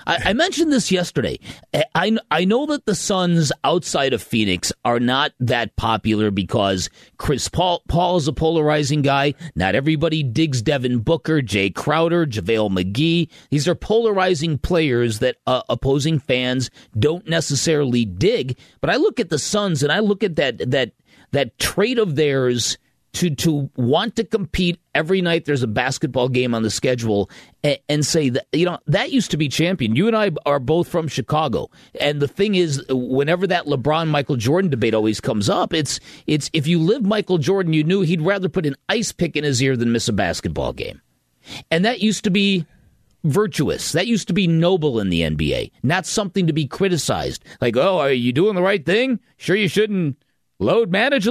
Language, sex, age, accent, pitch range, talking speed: English, male, 40-59, American, 130-185 Hz, 190 wpm